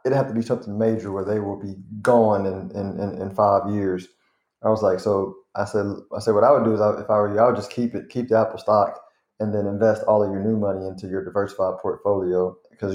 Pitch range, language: 100-115 Hz, English